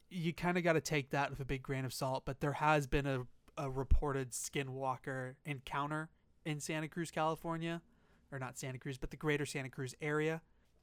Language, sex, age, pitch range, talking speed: English, male, 20-39, 130-155 Hz, 200 wpm